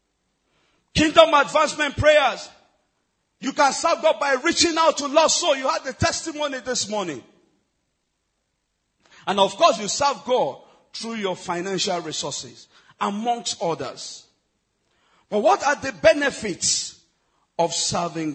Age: 50-69